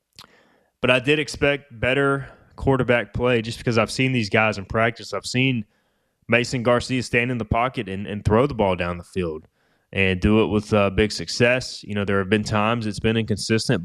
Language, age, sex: English, 20-39, male